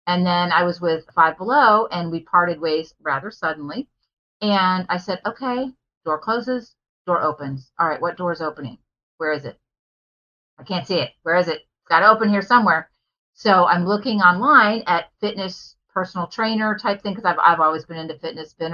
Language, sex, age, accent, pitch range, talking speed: English, female, 40-59, American, 155-200 Hz, 190 wpm